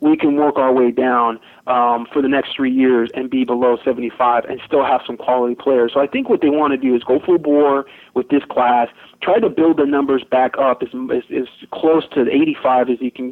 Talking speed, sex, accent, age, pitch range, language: 240 wpm, male, American, 30-49, 125-160 Hz, English